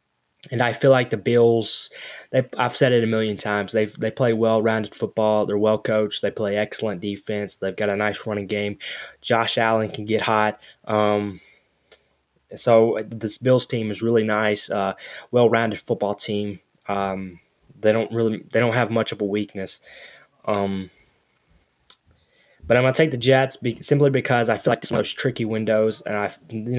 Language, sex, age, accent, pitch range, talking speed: English, male, 20-39, American, 105-120 Hz, 165 wpm